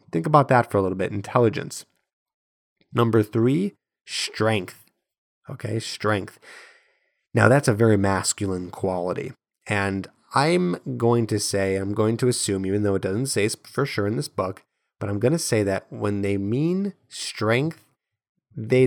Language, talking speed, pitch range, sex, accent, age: English, 155 wpm, 95-120 Hz, male, American, 30-49